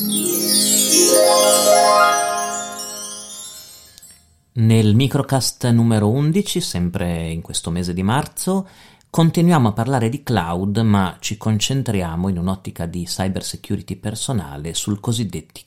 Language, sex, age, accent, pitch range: Italian, male, 40-59, native, 90-125 Hz